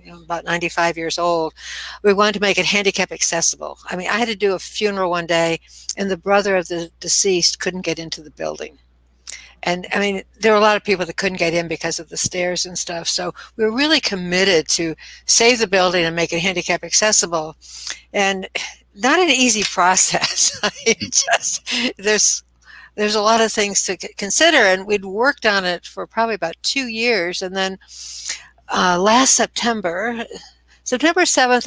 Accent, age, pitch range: American, 60-79, 175-215 Hz